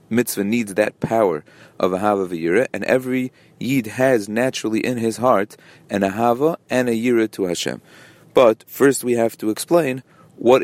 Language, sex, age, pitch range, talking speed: English, male, 30-49, 105-125 Hz, 170 wpm